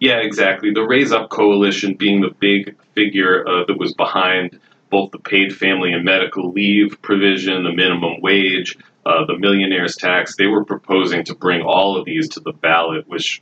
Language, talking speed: English, 185 wpm